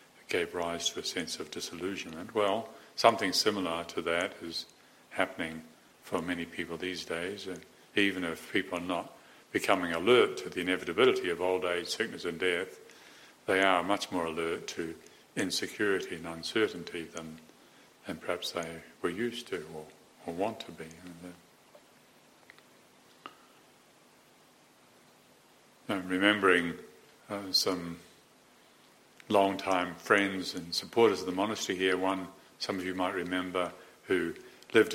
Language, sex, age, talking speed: English, male, 50-69, 125 wpm